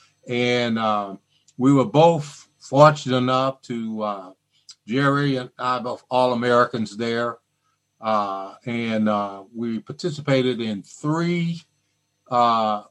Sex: male